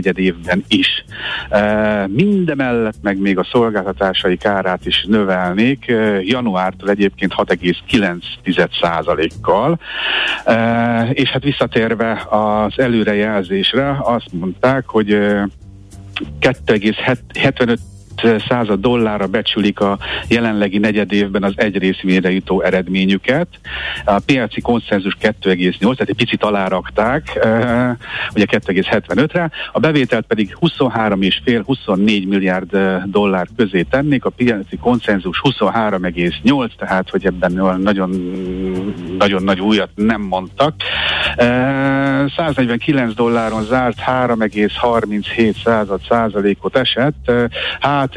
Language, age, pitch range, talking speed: Hungarian, 60-79, 95-120 Hz, 100 wpm